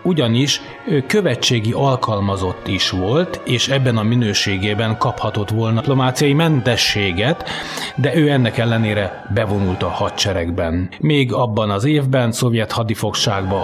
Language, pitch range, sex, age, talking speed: Hungarian, 100-125 Hz, male, 30-49, 120 wpm